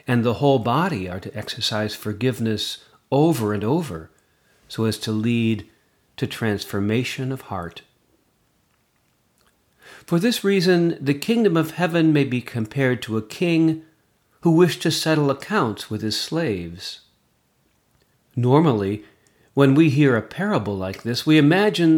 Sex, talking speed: male, 135 wpm